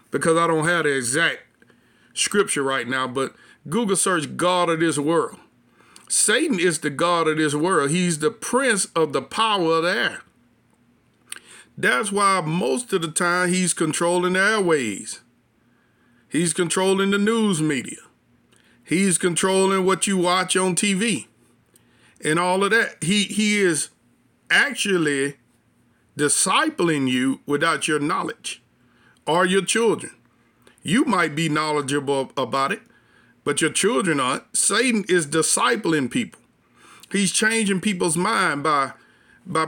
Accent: American